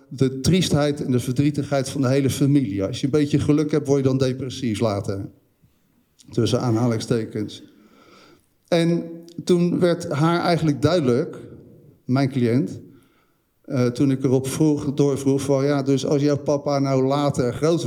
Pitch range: 125-150 Hz